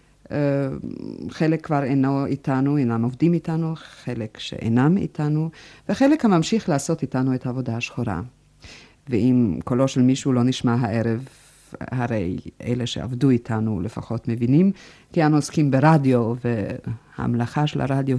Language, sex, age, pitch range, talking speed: Hebrew, female, 50-69, 120-155 Hz, 125 wpm